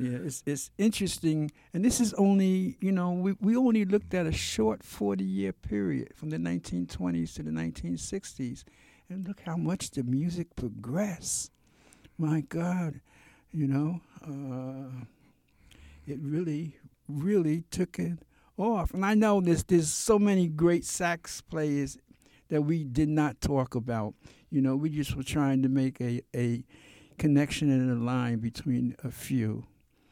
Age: 60-79